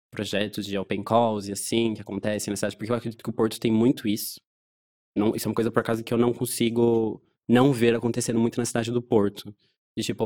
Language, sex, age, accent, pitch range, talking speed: Portuguese, male, 20-39, Brazilian, 105-125 Hz, 235 wpm